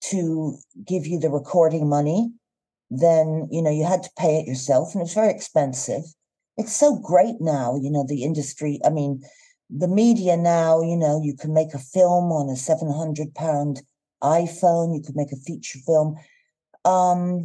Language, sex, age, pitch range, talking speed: English, female, 50-69, 140-180 Hz, 175 wpm